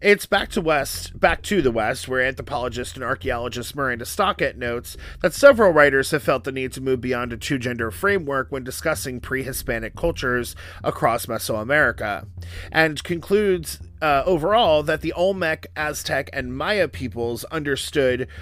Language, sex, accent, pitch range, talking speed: English, male, American, 120-150 Hz, 150 wpm